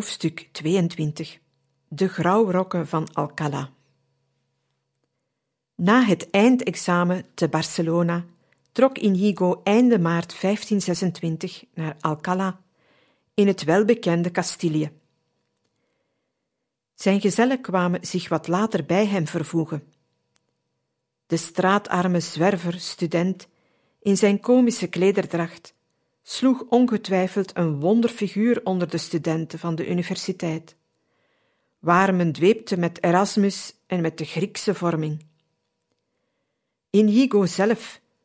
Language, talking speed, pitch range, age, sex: Dutch, 95 wpm, 170-205 Hz, 50-69, female